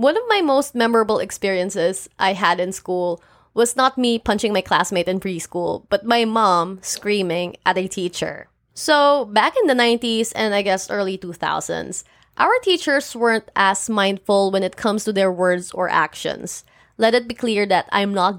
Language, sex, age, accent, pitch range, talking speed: English, female, 20-39, Filipino, 180-220 Hz, 180 wpm